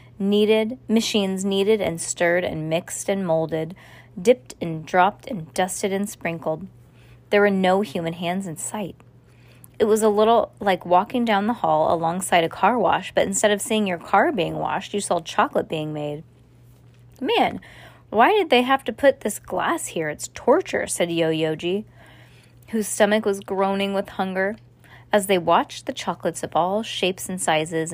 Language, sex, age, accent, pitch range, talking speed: English, female, 20-39, American, 155-205 Hz, 170 wpm